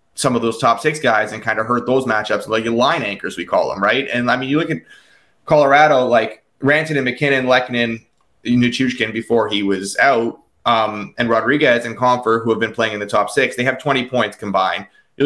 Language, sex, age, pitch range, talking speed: English, male, 20-39, 110-125 Hz, 220 wpm